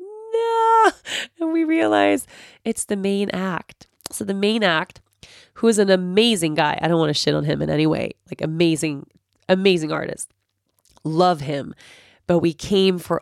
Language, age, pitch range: English, 20-39, 165-245 Hz